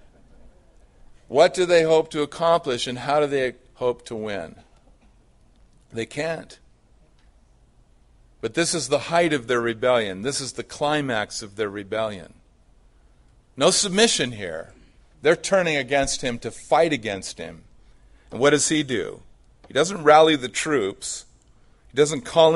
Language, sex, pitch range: English, male, 95-145 Hz